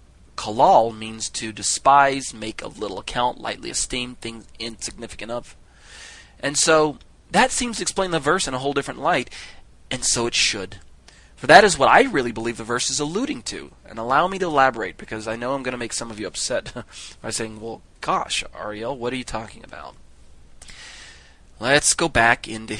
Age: 30-49